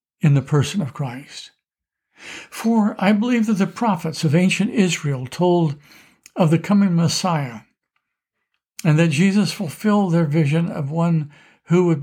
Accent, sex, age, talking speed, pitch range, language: American, male, 60-79, 145 wpm, 150-195 Hz, English